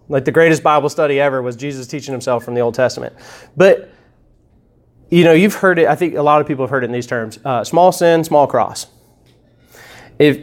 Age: 30-49